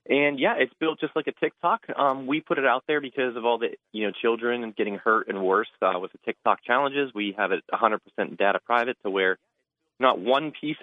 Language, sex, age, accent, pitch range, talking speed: English, male, 30-49, American, 95-125 Hz, 225 wpm